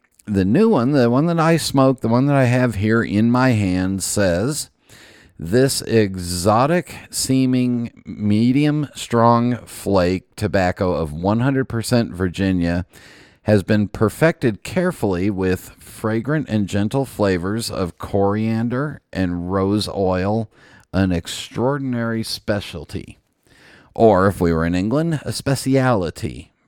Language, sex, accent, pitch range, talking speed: English, male, American, 90-125 Hz, 120 wpm